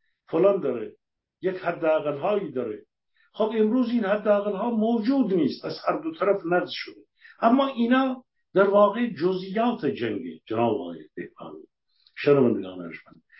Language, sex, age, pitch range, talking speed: Persian, male, 60-79, 160-220 Hz, 125 wpm